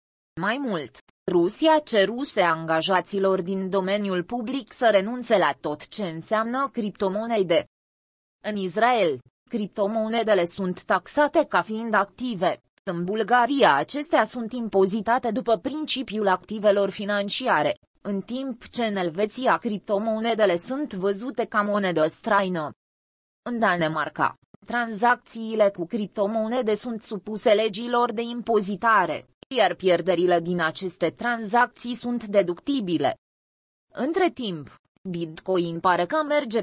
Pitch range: 190-240 Hz